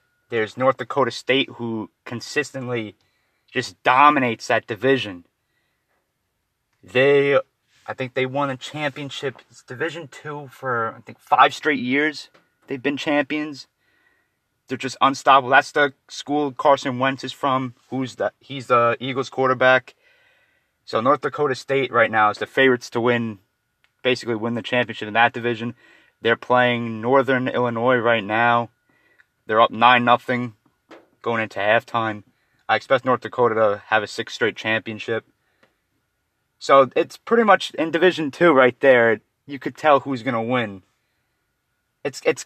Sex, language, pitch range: male, English, 120-140 Hz